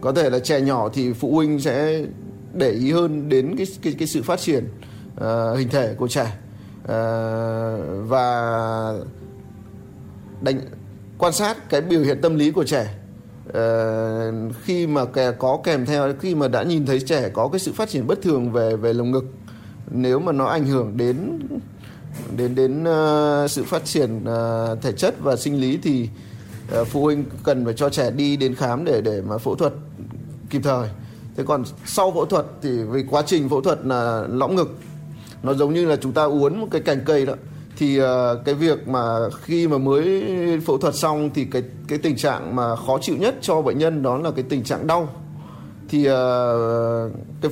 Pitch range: 115-150 Hz